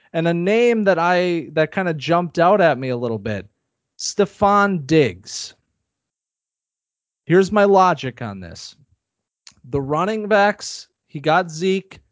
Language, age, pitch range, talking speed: English, 30-49, 135-185 Hz, 140 wpm